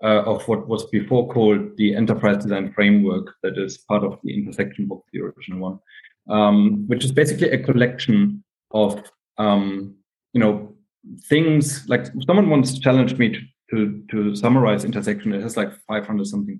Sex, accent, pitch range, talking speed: male, German, 105-135 Hz, 165 wpm